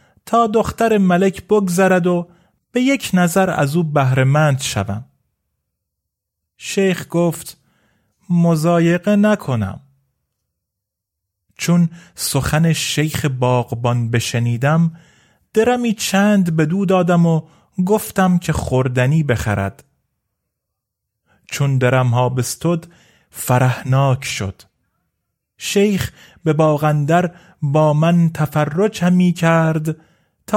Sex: male